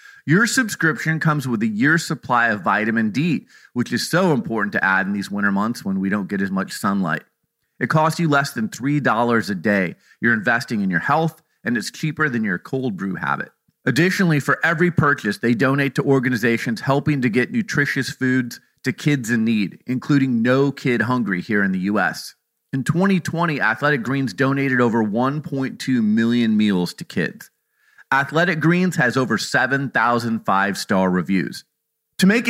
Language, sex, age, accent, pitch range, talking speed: English, male, 30-49, American, 115-155 Hz, 170 wpm